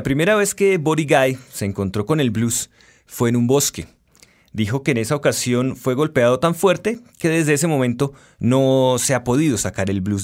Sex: male